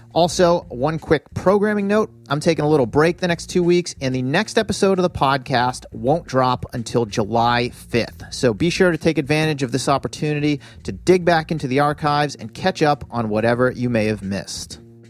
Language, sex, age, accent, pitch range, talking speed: English, male, 40-59, American, 115-150 Hz, 200 wpm